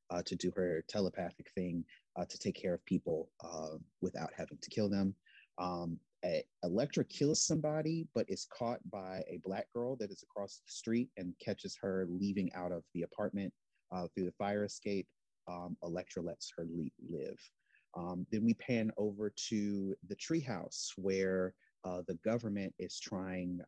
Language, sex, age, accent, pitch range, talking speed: English, male, 30-49, American, 90-105 Hz, 165 wpm